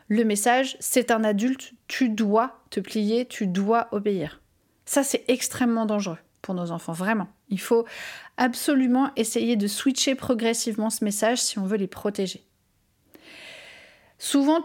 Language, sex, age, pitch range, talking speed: French, female, 30-49, 205-255 Hz, 145 wpm